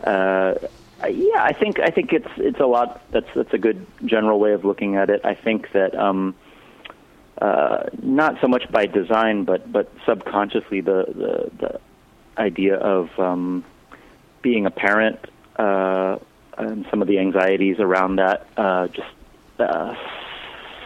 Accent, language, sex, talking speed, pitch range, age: American, English, male, 150 wpm, 90-110 Hz, 30-49